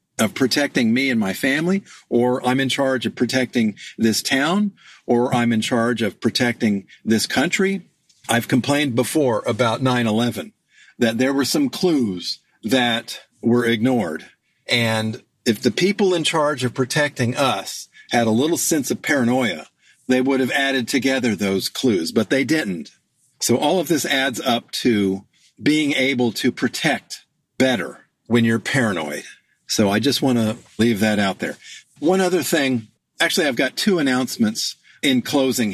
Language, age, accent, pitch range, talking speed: English, 50-69, American, 115-145 Hz, 160 wpm